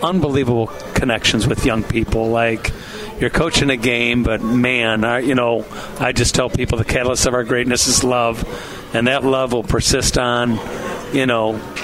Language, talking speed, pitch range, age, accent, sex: English, 165 wpm, 120-140 Hz, 50-69, American, male